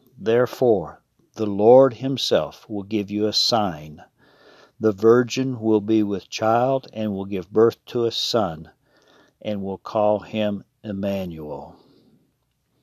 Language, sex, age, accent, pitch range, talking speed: English, male, 50-69, American, 100-120 Hz, 125 wpm